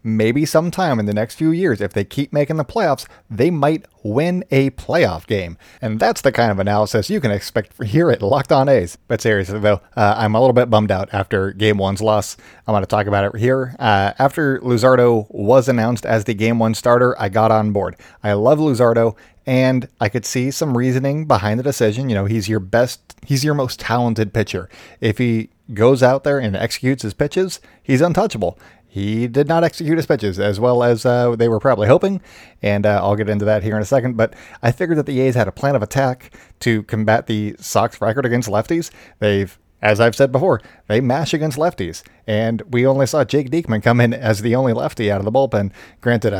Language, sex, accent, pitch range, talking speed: English, male, American, 105-135 Hz, 220 wpm